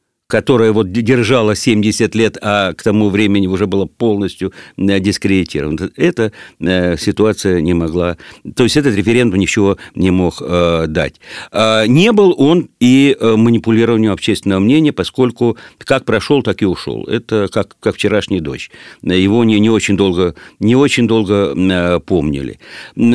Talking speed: 135 wpm